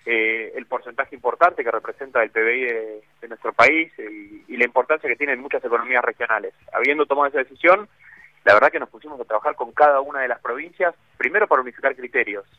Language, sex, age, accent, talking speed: Spanish, male, 30-49, Argentinian, 200 wpm